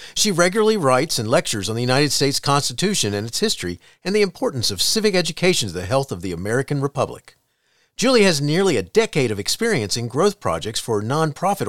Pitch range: 120-180 Hz